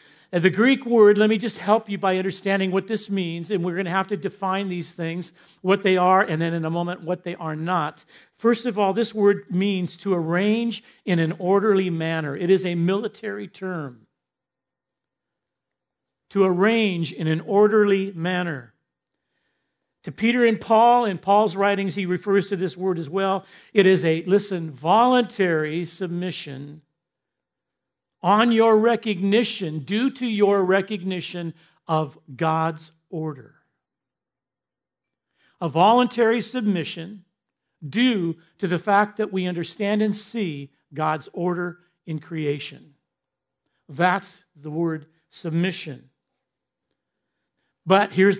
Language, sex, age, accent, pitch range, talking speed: English, male, 50-69, American, 160-200 Hz, 135 wpm